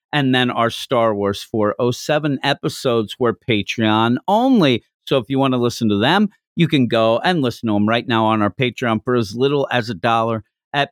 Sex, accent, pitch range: male, American, 110-145 Hz